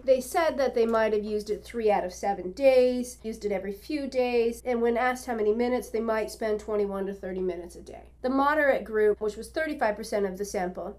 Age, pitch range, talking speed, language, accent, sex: 40-59, 200-240 Hz, 230 wpm, English, American, female